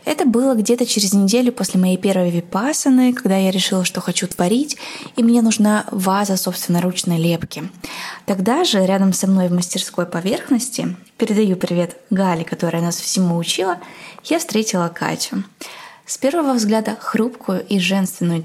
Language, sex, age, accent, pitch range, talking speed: Russian, female, 20-39, native, 175-230 Hz, 145 wpm